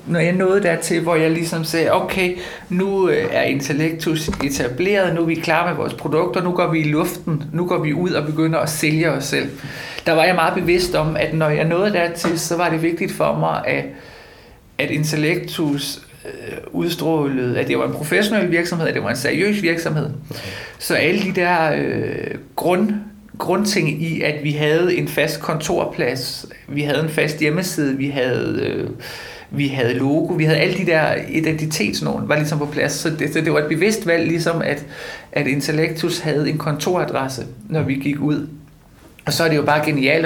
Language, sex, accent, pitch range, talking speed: Danish, male, native, 145-170 Hz, 190 wpm